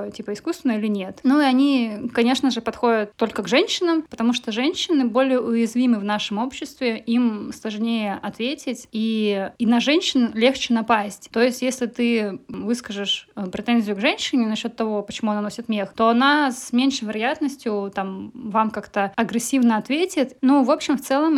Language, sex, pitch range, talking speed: Russian, female, 215-255 Hz, 165 wpm